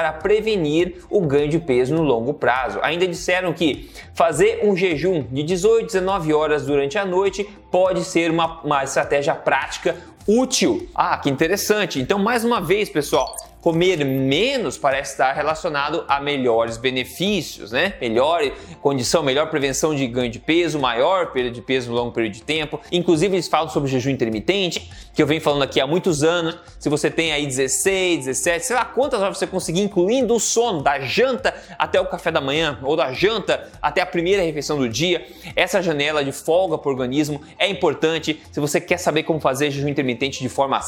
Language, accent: Portuguese, Brazilian